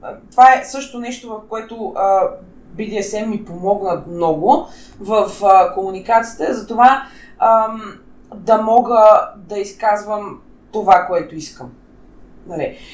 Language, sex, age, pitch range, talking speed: Bulgarian, female, 20-39, 185-230 Hz, 115 wpm